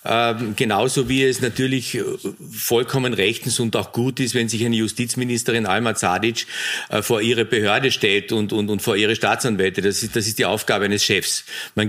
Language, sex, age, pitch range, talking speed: German, male, 50-69, 110-125 Hz, 185 wpm